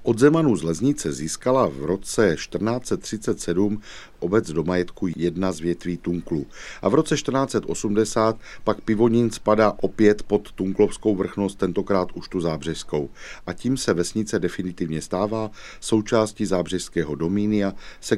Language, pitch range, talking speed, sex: Czech, 85-110 Hz, 130 wpm, male